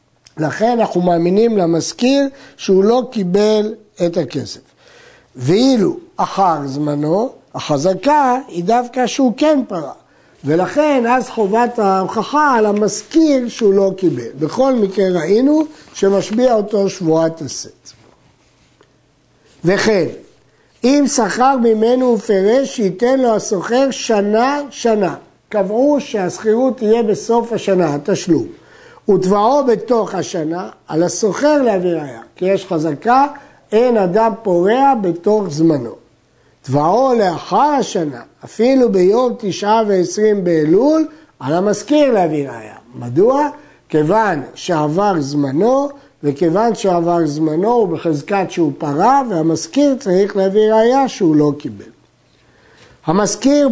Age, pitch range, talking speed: 60-79, 170-245 Hz, 110 wpm